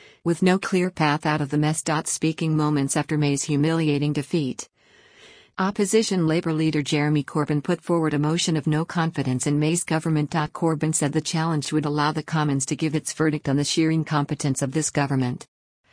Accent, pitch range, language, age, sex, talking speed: American, 145-165 Hz, English, 50-69, female, 180 wpm